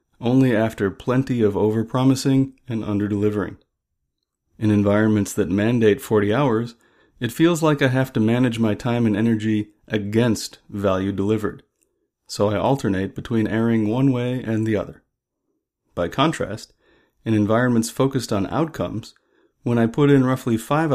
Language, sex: English, male